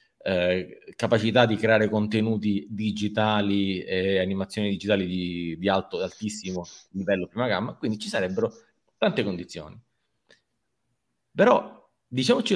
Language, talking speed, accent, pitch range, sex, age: Italian, 110 wpm, native, 95-120 Hz, male, 30-49